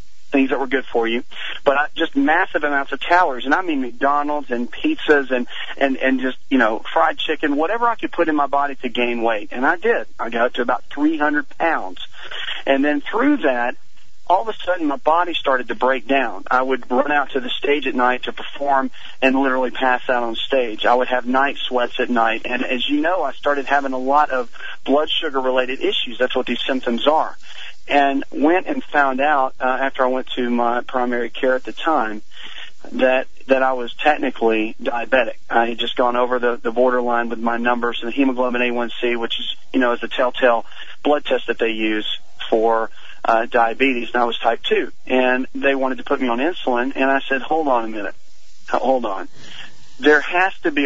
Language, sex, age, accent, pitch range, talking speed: English, male, 40-59, American, 120-145 Hz, 210 wpm